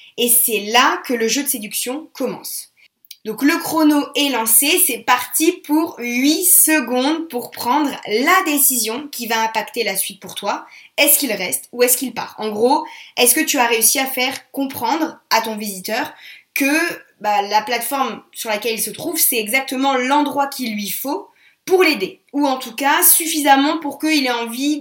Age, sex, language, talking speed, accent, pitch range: 20-39, female, French, 185 wpm, French, 230-295 Hz